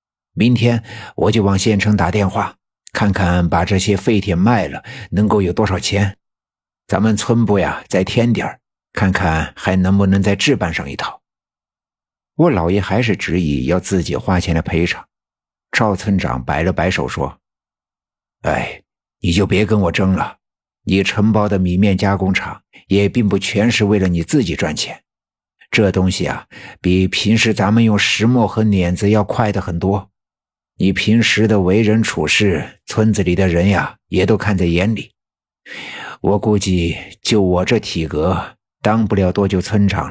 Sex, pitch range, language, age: male, 90-110 Hz, Chinese, 50-69